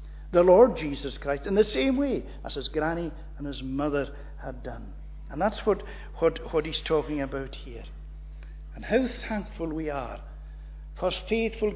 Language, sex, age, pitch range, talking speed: English, male, 60-79, 135-200 Hz, 165 wpm